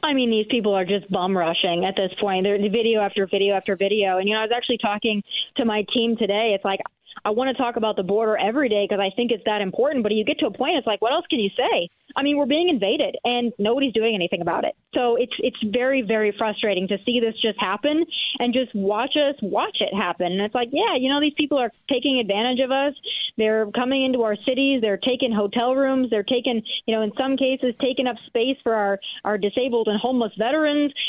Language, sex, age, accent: English, female, 20-39, American